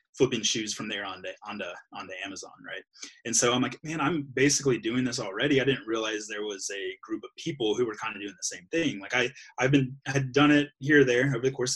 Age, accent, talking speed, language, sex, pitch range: 20-39, American, 265 wpm, English, male, 115-145 Hz